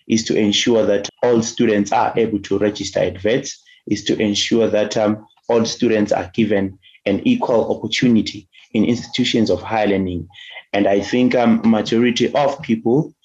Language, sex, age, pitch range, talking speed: English, male, 30-49, 100-115 Hz, 170 wpm